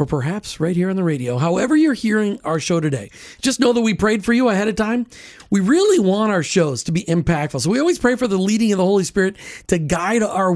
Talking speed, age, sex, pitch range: 255 wpm, 40-59, male, 165-225 Hz